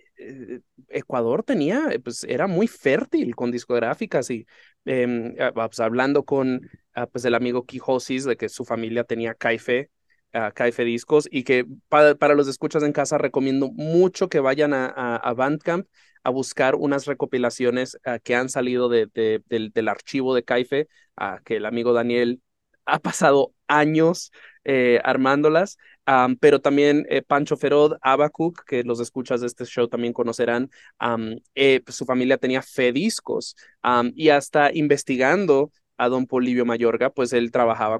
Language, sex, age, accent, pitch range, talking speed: English, male, 20-39, Mexican, 120-155 Hz, 160 wpm